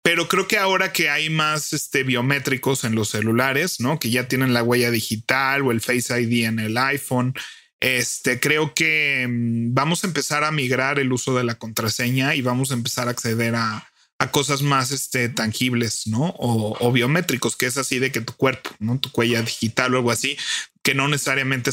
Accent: Mexican